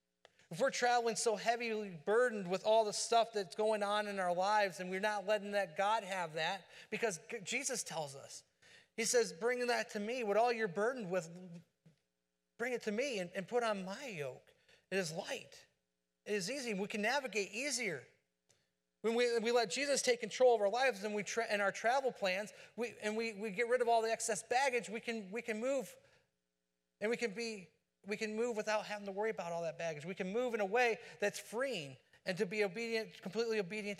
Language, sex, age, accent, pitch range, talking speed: English, male, 40-59, American, 165-225 Hz, 215 wpm